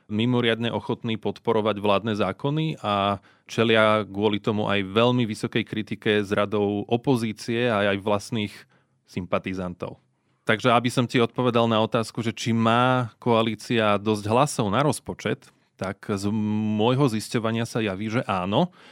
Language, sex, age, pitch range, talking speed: Slovak, male, 20-39, 105-120 Hz, 135 wpm